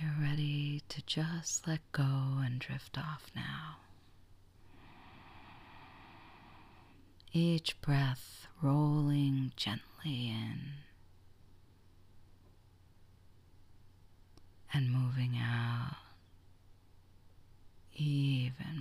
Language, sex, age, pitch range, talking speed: English, female, 40-59, 90-130 Hz, 60 wpm